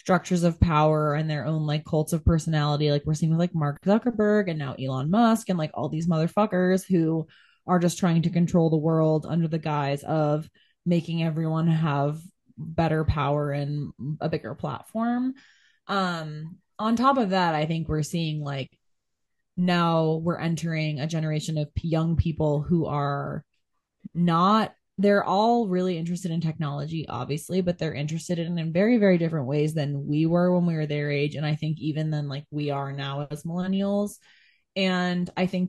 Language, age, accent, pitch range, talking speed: English, 20-39, American, 150-185 Hz, 180 wpm